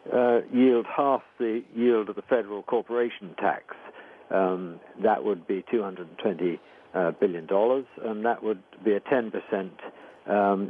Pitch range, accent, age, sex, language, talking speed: 105-125 Hz, British, 60-79, male, English, 140 wpm